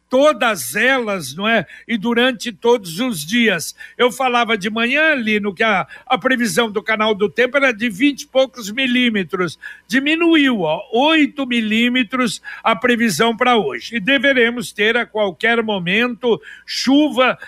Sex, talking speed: male, 150 wpm